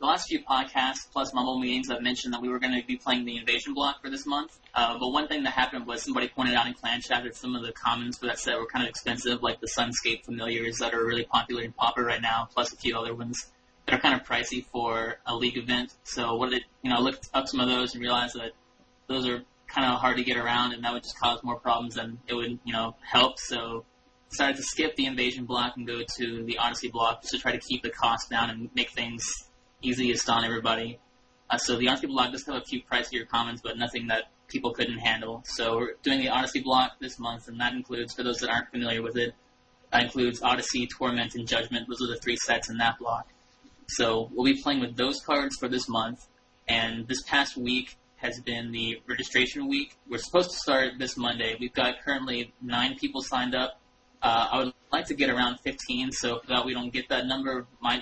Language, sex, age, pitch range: English, male, 20-39, 115-125 Hz